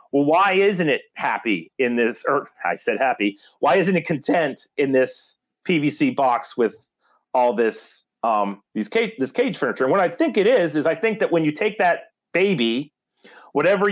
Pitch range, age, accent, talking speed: 140-190 Hz, 30-49, American, 190 wpm